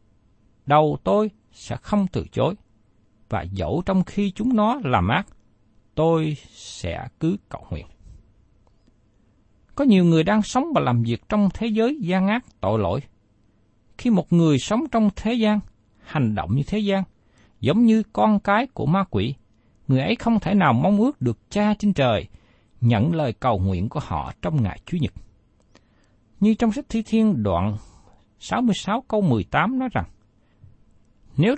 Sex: male